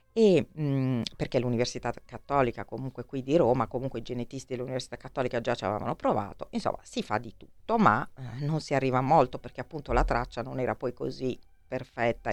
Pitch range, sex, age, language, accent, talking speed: 125-155 Hz, female, 40-59, Italian, native, 180 wpm